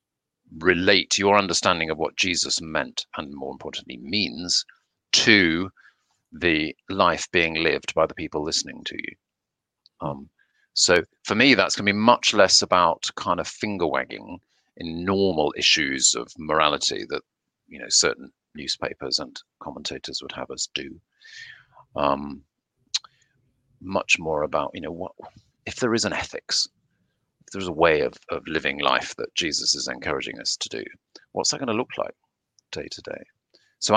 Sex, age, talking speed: male, 40-59, 155 wpm